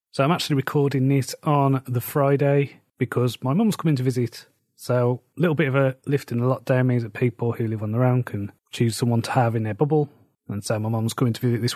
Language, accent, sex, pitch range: English, British, male, 120-135 Hz